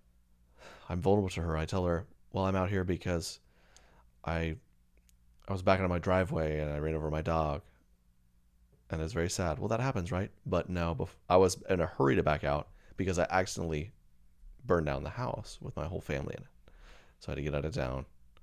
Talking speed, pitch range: 210 wpm, 80-125 Hz